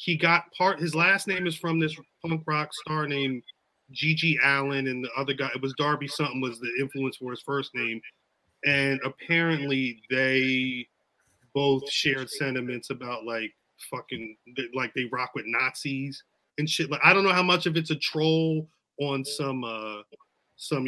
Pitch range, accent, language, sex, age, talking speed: 130-160 Hz, American, English, male, 30-49, 170 wpm